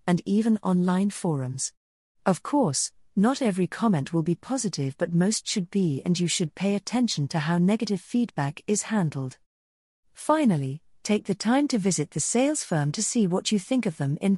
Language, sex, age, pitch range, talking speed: English, female, 40-59, 150-215 Hz, 185 wpm